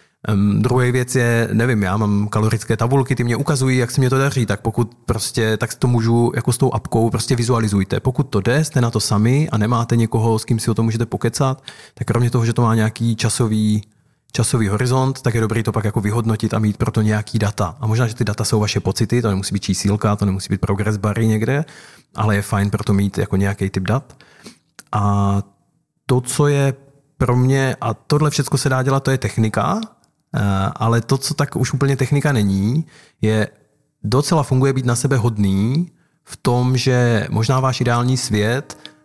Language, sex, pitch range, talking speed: Czech, male, 110-130 Hz, 205 wpm